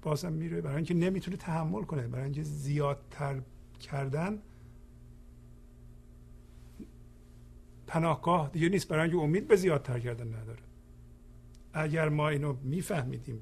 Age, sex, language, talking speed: 50-69, male, Persian, 110 wpm